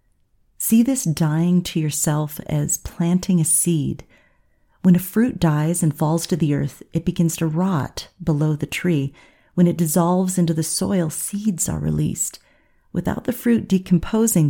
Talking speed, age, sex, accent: 155 wpm, 30-49, female, American